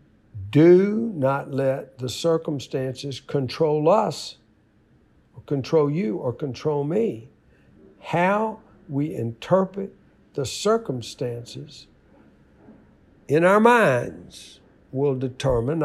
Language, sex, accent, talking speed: English, male, American, 85 wpm